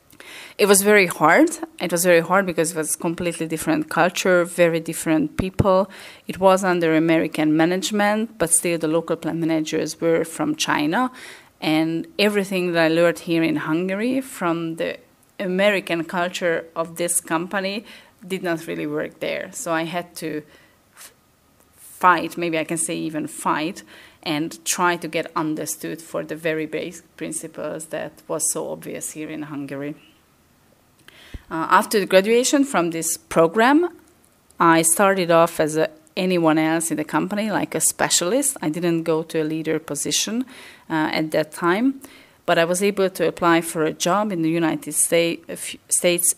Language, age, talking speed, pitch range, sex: English, 30-49, 160 wpm, 155-185 Hz, female